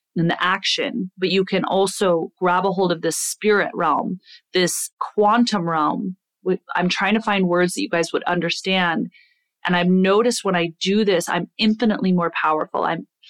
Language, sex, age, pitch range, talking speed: English, female, 30-49, 175-205 Hz, 175 wpm